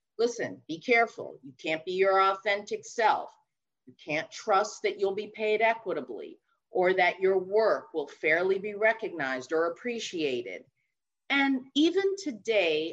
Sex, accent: female, American